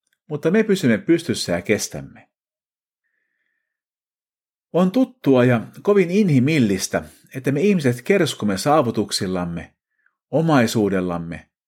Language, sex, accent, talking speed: Finnish, male, native, 85 wpm